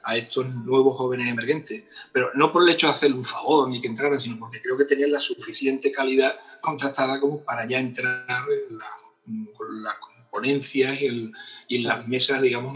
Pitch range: 125-175 Hz